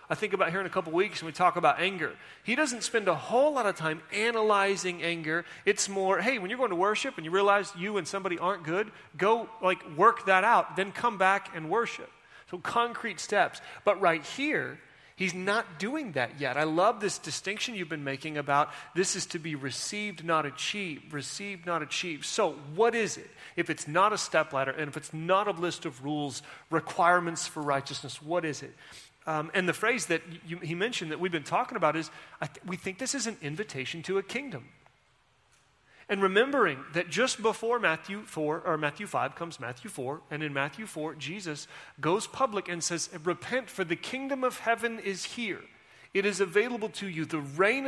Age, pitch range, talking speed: 30-49, 160-205 Hz, 205 wpm